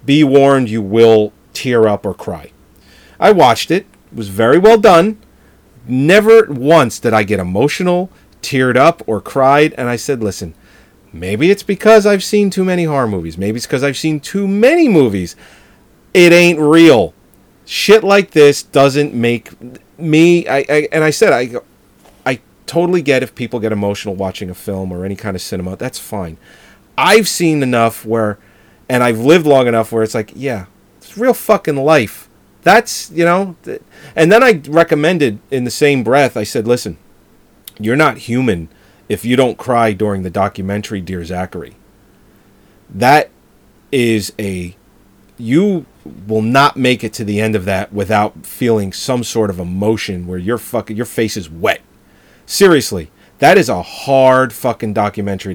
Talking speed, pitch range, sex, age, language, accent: 170 wpm, 100-145 Hz, male, 40-59, English, American